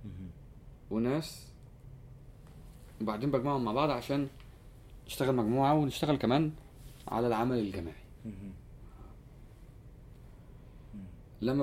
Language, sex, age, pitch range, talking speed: Arabic, male, 20-39, 110-135 Hz, 70 wpm